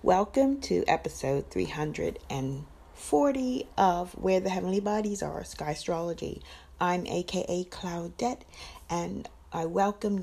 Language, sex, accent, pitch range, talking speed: English, female, American, 160-195 Hz, 105 wpm